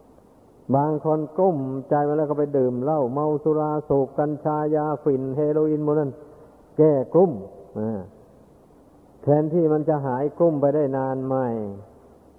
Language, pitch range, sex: Thai, 125-150 Hz, male